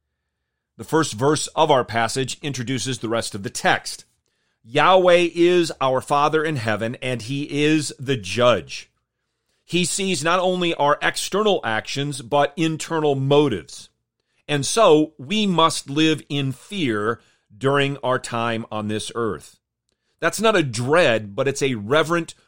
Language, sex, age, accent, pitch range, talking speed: English, male, 40-59, American, 125-160 Hz, 145 wpm